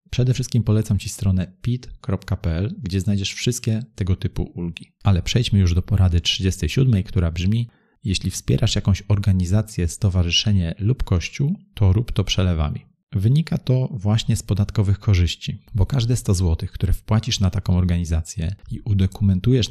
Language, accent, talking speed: Polish, native, 145 wpm